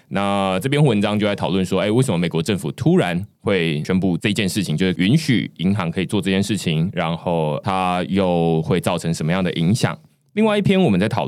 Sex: male